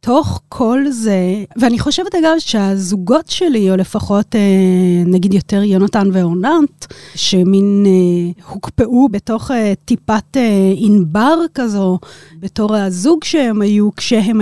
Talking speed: 110 wpm